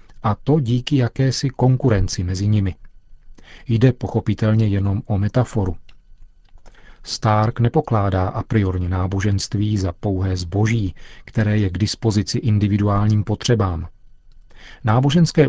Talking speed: 105 wpm